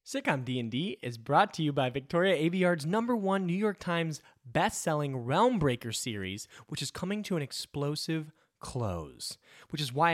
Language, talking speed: English, 180 wpm